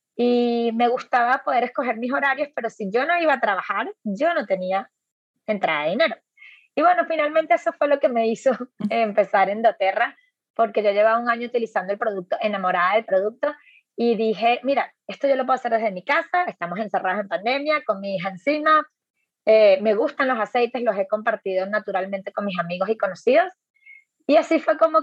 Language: Spanish